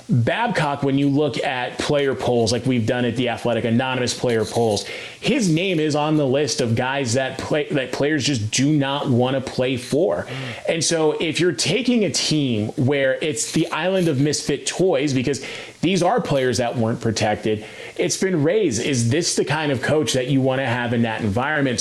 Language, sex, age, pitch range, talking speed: English, male, 30-49, 120-150 Hz, 200 wpm